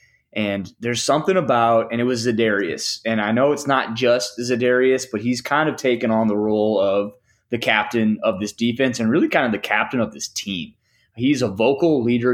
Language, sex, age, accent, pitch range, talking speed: English, male, 20-39, American, 110-135 Hz, 205 wpm